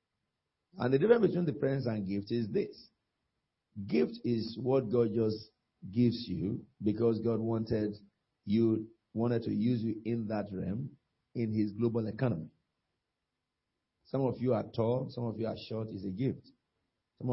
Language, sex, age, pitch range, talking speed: English, male, 50-69, 105-125 Hz, 160 wpm